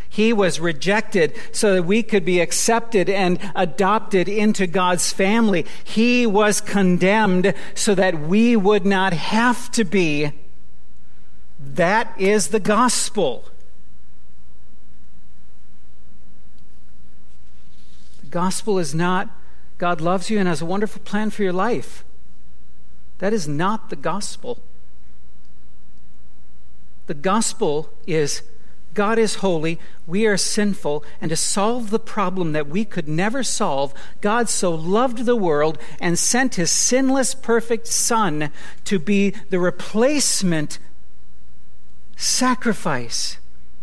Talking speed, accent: 115 wpm, American